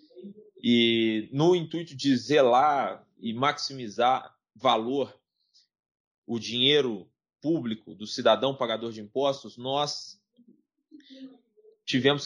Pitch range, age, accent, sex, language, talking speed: 120-155 Hz, 20-39, Brazilian, male, Portuguese, 90 wpm